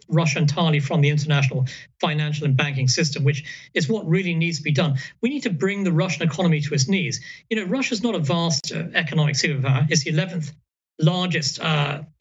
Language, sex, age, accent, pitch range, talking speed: English, male, 40-59, British, 150-180 Hz, 200 wpm